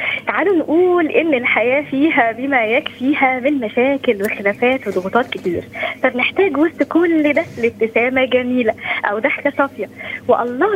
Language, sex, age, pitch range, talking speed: Arabic, female, 20-39, 225-295 Hz, 125 wpm